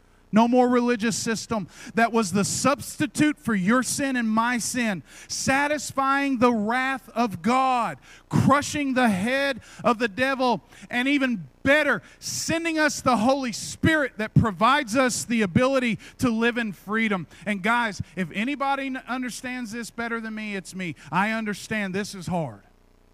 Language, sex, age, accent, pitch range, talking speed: English, male, 40-59, American, 145-225 Hz, 150 wpm